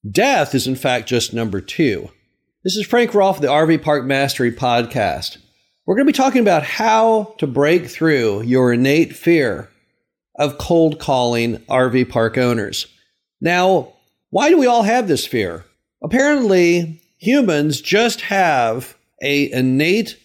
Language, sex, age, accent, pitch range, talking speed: English, male, 50-69, American, 125-190 Hz, 150 wpm